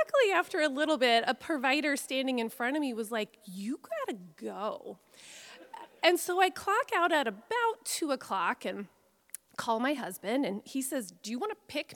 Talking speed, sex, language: 195 wpm, female, English